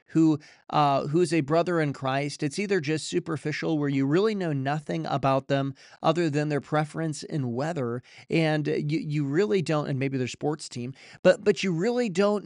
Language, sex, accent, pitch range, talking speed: English, male, American, 140-175 Hz, 185 wpm